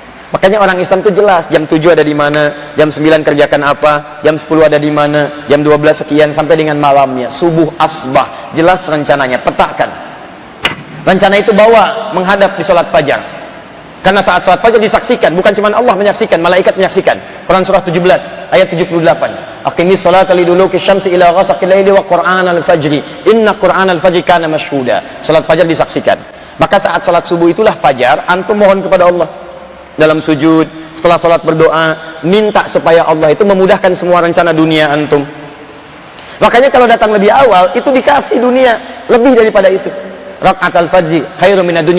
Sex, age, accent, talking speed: male, 30-49, native, 150 wpm